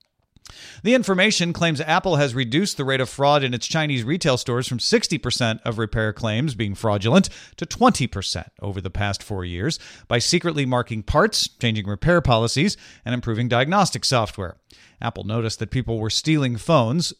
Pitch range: 115-160 Hz